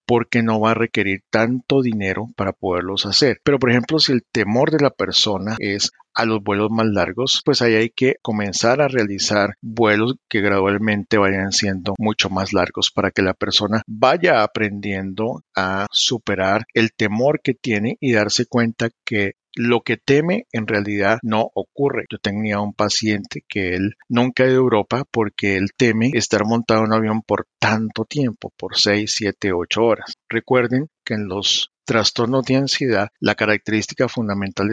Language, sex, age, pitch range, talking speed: English, male, 50-69, 100-115 Hz, 170 wpm